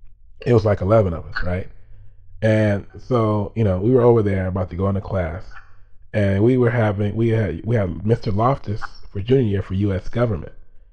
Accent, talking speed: American, 200 wpm